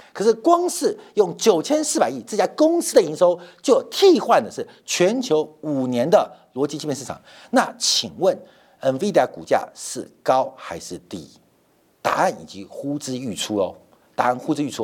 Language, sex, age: Chinese, male, 50-69